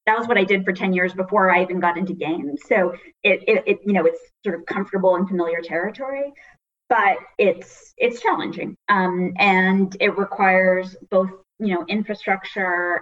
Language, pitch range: English, 175-200 Hz